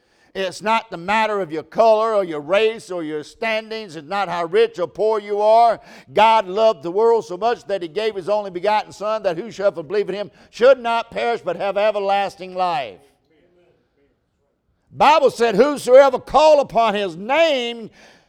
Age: 60-79